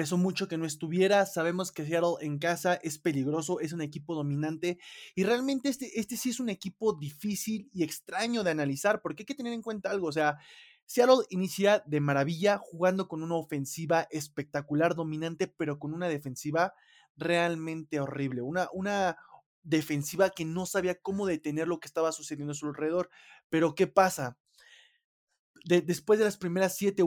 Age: 20-39